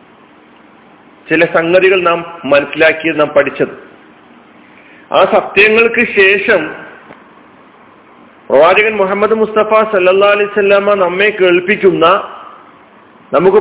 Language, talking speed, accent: Malayalam, 75 wpm, native